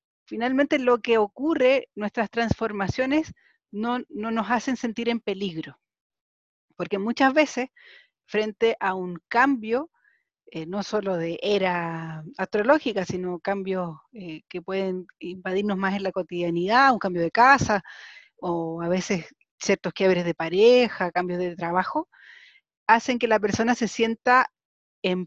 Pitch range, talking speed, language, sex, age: 190-250 Hz, 135 wpm, Spanish, female, 40-59